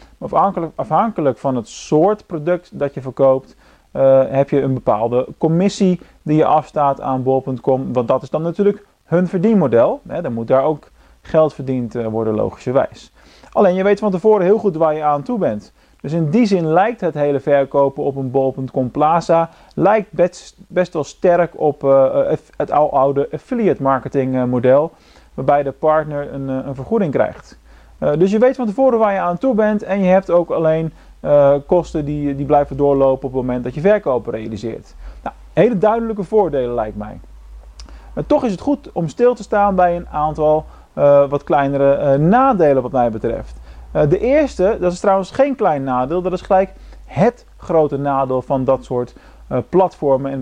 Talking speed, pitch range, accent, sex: 175 wpm, 135-190 Hz, Dutch, male